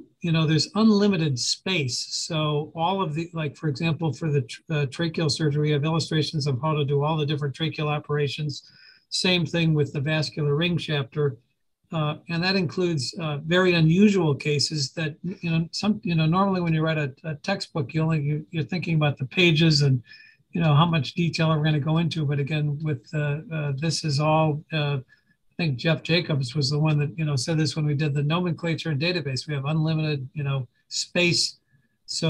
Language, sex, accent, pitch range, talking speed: English, male, American, 145-165 Hz, 200 wpm